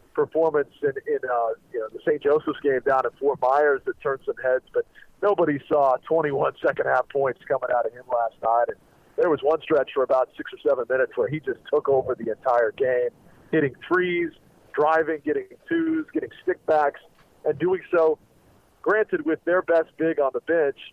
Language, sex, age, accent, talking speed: English, male, 40-59, American, 200 wpm